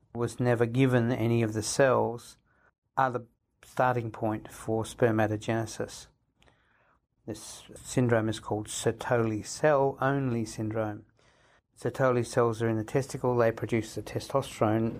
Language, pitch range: English, 110-125 Hz